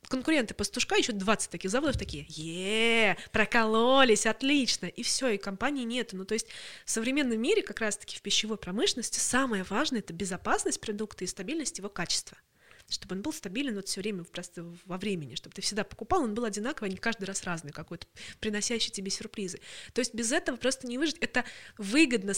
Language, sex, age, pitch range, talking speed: Russian, female, 20-39, 205-265 Hz, 190 wpm